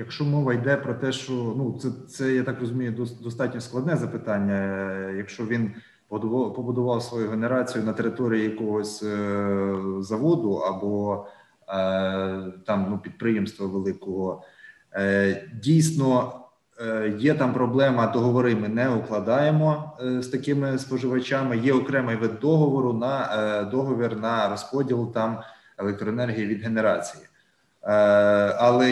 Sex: male